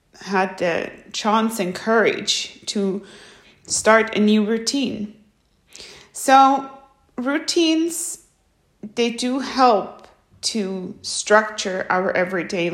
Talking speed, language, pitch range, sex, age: 90 wpm, English, 185-220 Hz, female, 30-49